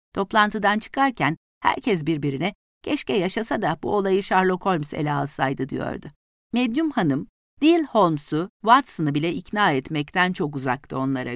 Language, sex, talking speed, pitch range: Turkish, female, 130 wpm, 140-210 Hz